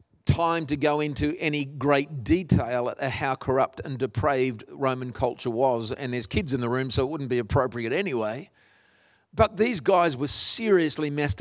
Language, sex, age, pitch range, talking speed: English, male, 40-59, 130-190 Hz, 175 wpm